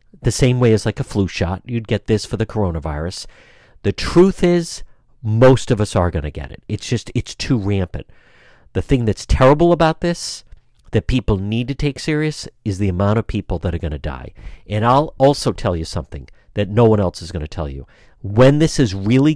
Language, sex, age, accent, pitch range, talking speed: English, male, 50-69, American, 90-130 Hz, 220 wpm